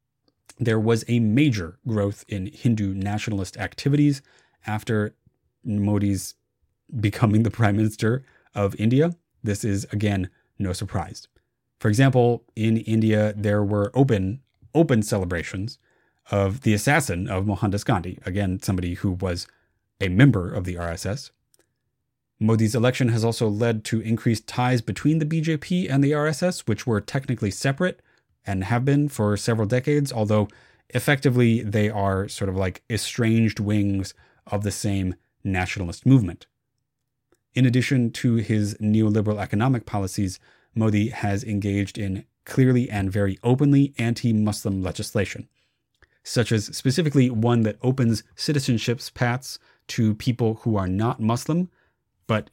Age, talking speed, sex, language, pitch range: 30-49, 135 wpm, male, English, 100-125 Hz